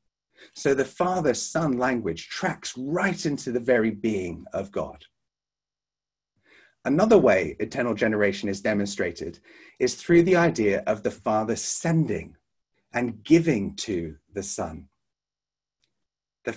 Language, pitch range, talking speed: English, 100-155 Hz, 115 wpm